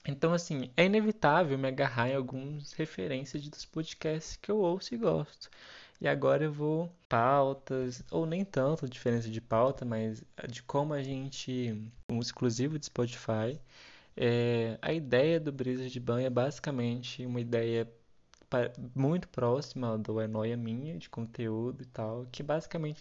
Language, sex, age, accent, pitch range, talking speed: Portuguese, male, 20-39, Brazilian, 115-150 Hz, 150 wpm